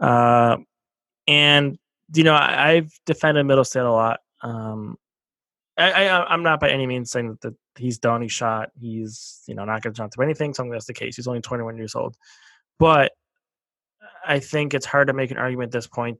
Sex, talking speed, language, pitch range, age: male, 210 wpm, English, 120-150 Hz, 20-39